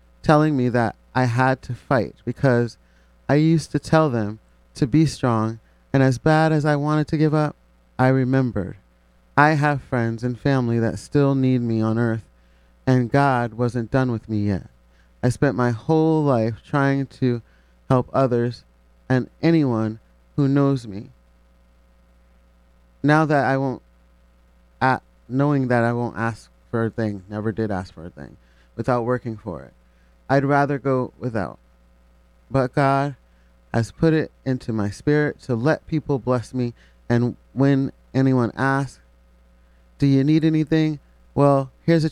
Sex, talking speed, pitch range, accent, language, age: male, 155 wpm, 90-135 Hz, American, English, 30-49